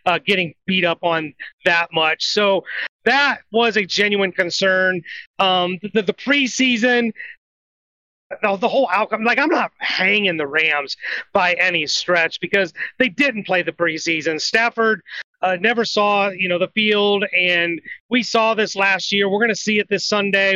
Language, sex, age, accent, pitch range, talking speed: English, male, 30-49, American, 180-225 Hz, 170 wpm